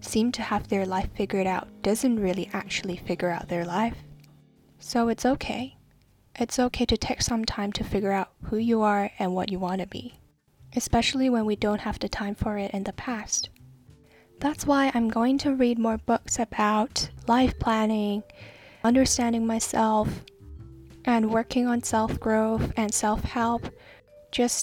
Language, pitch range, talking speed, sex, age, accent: English, 200-240 Hz, 165 wpm, female, 10-29, American